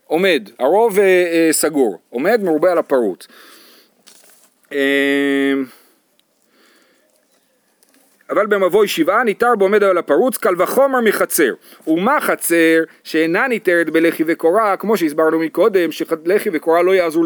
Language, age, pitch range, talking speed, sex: Hebrew, 40-59, 160-230 Hz, 120 wpm, male